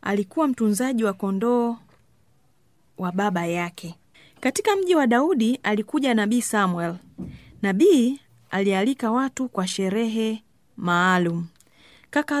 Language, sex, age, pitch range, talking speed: Swahili, female, 30-49, 190-255 Hz, 100 wpm